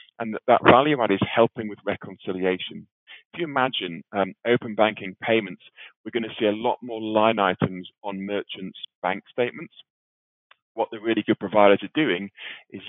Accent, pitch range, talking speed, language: British, 95-115 Hz, 165 wpm, English